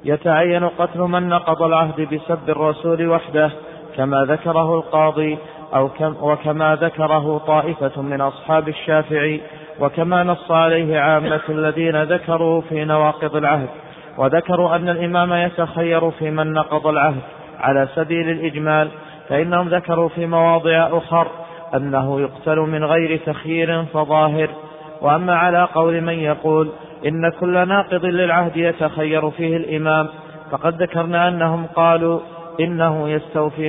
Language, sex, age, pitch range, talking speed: Arabic, male, 30-49, 155-165 Hz, 120 wpm